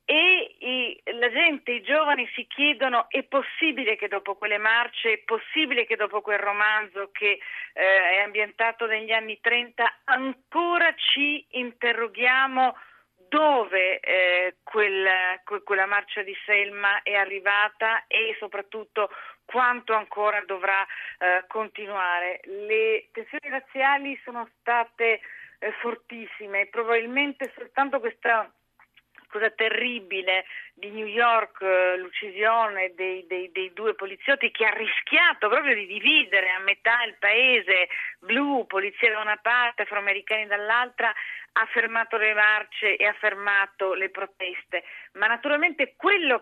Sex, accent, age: female, native, 40-59